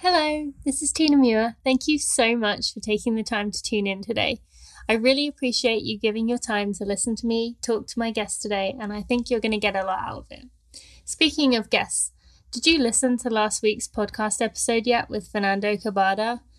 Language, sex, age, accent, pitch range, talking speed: English, female, 20-39, British, 205-250 Hz, 215 wpm